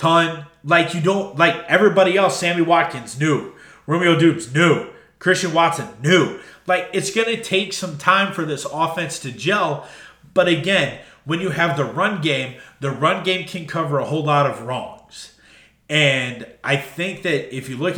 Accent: American